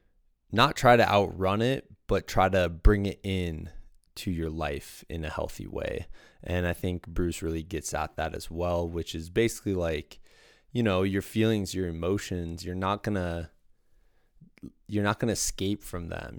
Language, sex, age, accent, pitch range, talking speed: English, male, 20-39, American, 85-100 Hz, 180 wpm